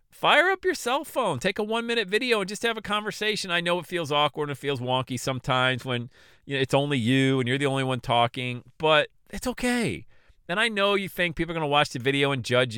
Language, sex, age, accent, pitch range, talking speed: English, male, 40-59, American, 115-180 Hz, 255 wpm